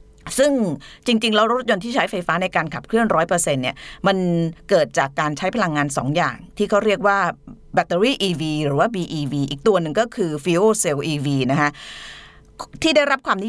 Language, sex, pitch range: Thai, female, 150-205 Hz